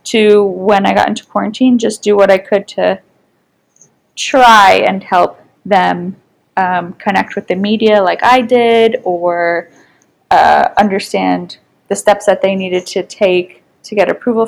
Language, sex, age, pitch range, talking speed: English, female, 20-39, 180-235 Hz, 155 wpm